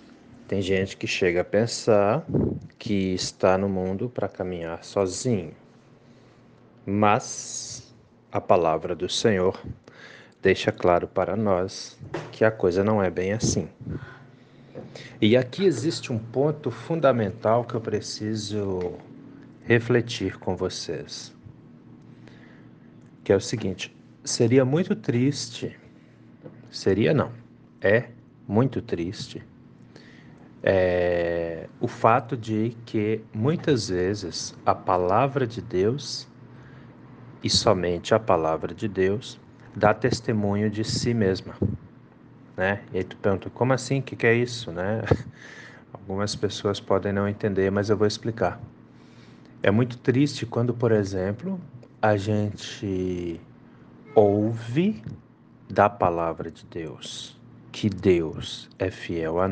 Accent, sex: Brazilian, male